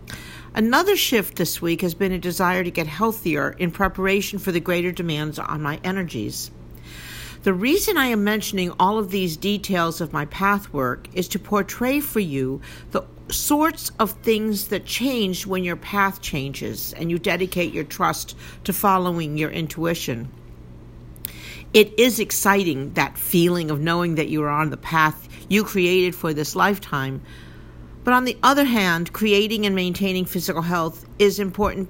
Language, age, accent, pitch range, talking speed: English, 50-69, American, 155-200 Hz, 165 wpm